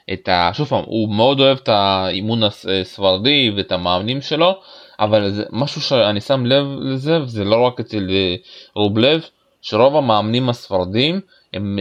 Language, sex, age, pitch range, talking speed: Hebrew, male, 20-39, 110-150 Hz, 160 wpm